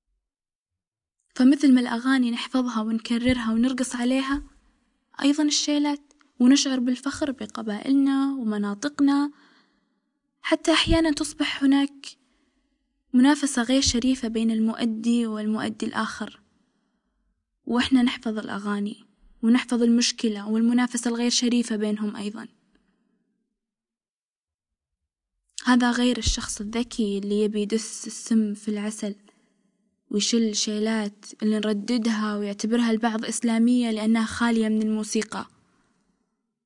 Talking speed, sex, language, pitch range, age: 90 wpm, female, Arabic, 220-260 Hz, 10-29